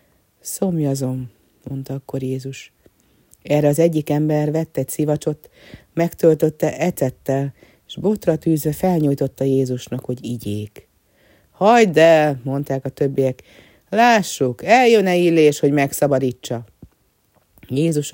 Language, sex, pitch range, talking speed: Hungarian, female, 130-155 Hz, 105 wpm